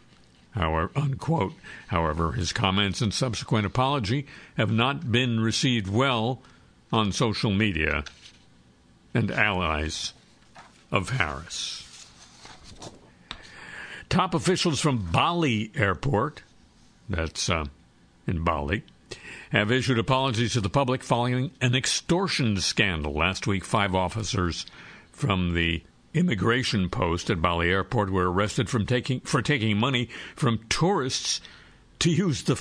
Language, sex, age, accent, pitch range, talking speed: English, male, 60-79, American, 90-130 Hz, 110 wpm